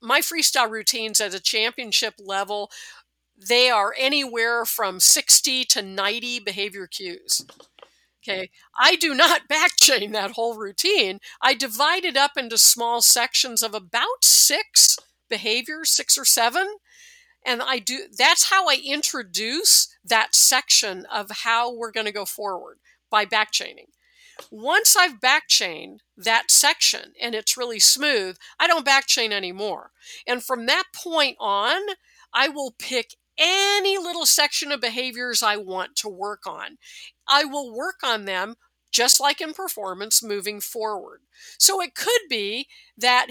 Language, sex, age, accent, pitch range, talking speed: English, female, 50-69, American, 220-315 Hz, 145 wpm